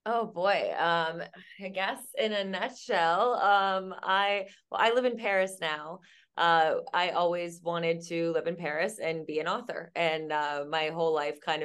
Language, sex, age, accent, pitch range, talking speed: English, female, 20-39, American, 150-185 Hz, 175 wpm